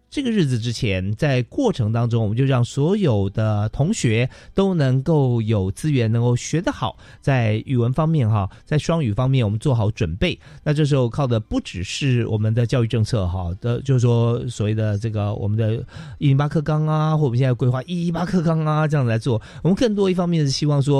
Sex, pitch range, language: male, 110-145 Hz, Chinese